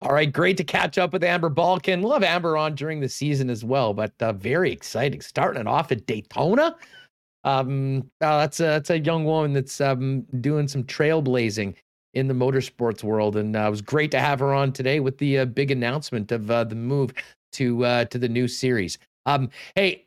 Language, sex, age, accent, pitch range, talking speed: English, male, 40-59, American, 130-165 Hz, 210 wpm